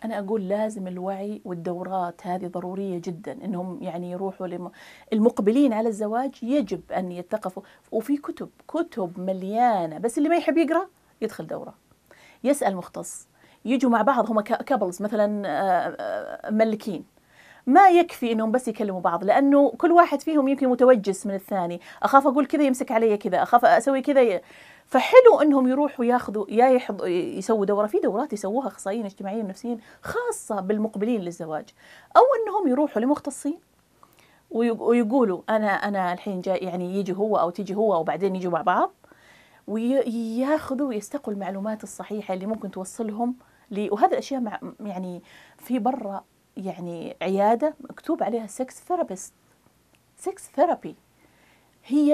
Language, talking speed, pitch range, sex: Arabic, 135 wpm, 195-275 Hz, female